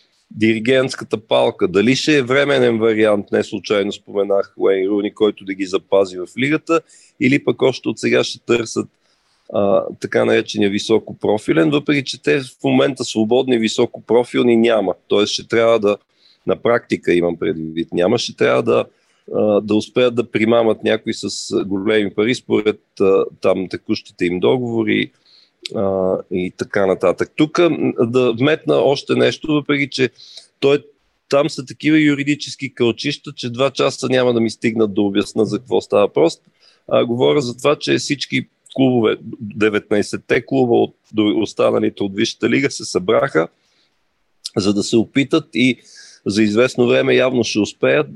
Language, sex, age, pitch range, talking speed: Bulgarian, male, 40-59, 105-135 Hz, 155 wpm